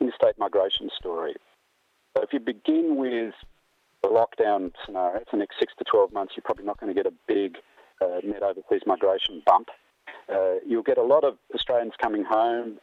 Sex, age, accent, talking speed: male, 40-59, Australian, 190 wpm